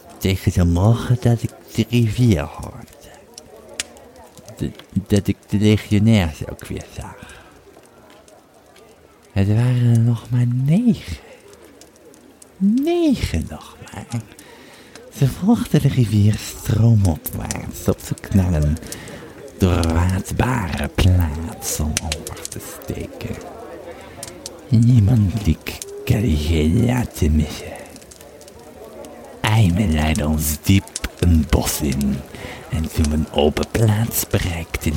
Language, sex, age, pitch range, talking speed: Dutch, male, 50-69, 80-110 Hz, 105 wpm